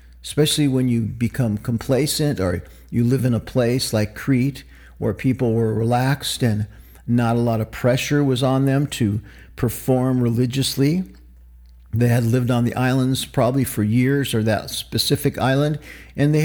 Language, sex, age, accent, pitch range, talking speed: English, male, 50-69, American, 110-145 Hz, 160 wpm